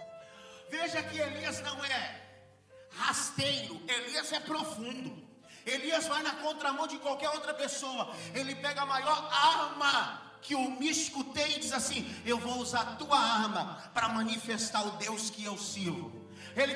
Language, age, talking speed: Portuguese, 40-59, 150 wpm